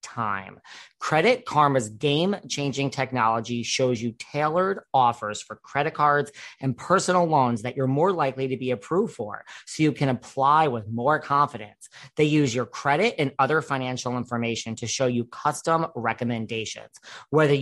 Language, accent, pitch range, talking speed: English, American, 125-155 Hz, 155 wpm